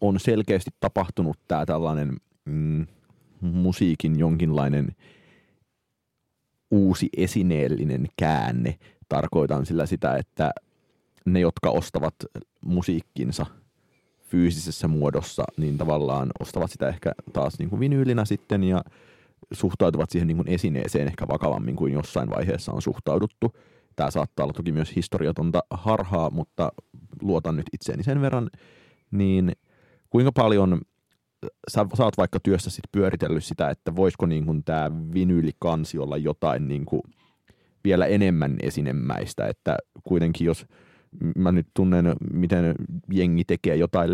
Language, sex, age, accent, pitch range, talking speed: Finnish, male, 30-49, native, 80-95 Hz, 120 wpm